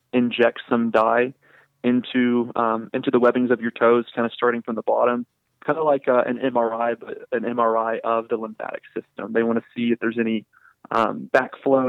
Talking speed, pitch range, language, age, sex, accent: 195 wpm, 115-125 Hz, English, 20-39, male, American